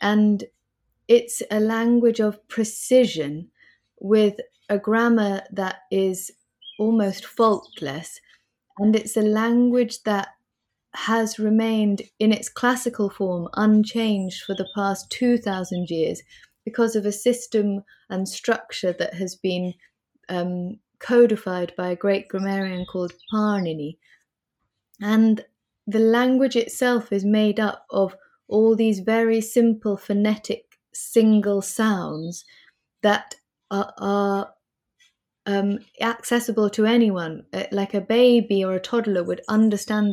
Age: 20-39